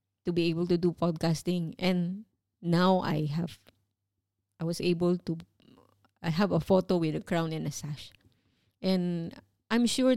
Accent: Filipino